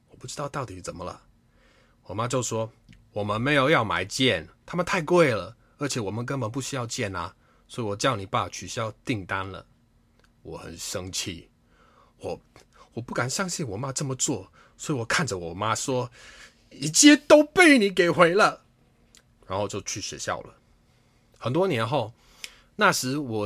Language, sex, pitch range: Chinese, male, 105-145 Hz